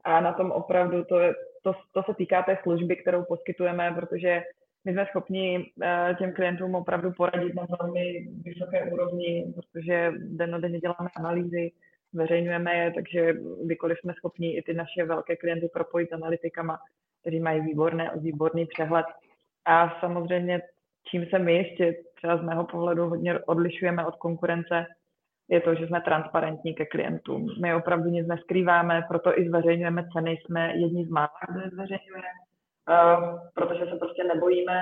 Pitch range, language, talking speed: 165-180 Hz, Czech, 150 wpm